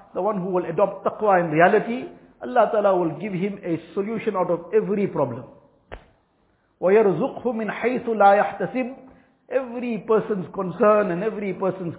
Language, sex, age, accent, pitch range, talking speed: English, male, 50-69, Indian, 180-215 Hz, 125 wpm